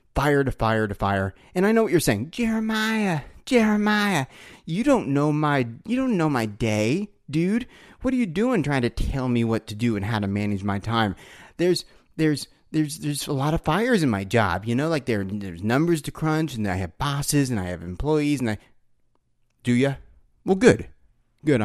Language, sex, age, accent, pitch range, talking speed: English, male, 30-49, American, 105-145 Hz, 205 wpm